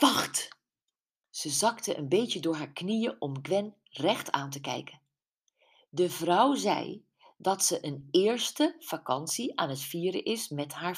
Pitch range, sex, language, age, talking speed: 150-220 Hz, female, Dutch, 40-59, 155 wpm